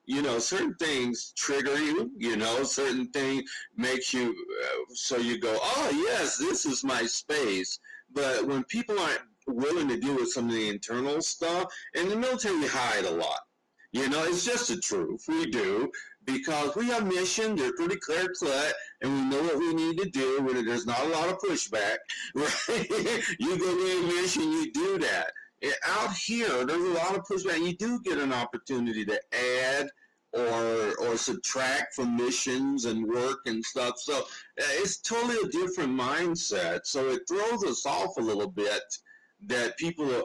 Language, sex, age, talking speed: English, male, 50-69, 175 wpm